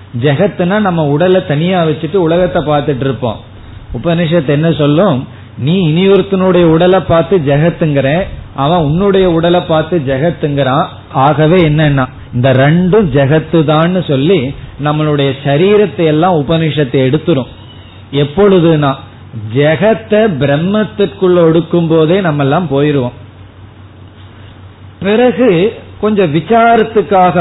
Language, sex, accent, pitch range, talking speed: Tamil, male, native, 140-180 Hz, 70 wpm